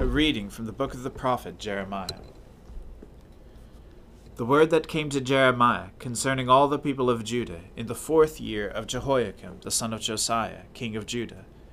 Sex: male